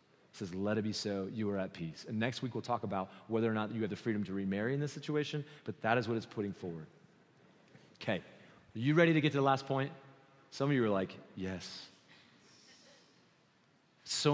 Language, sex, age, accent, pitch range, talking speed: English, male, 30-49, American, 105-140 Hz, 215 wpm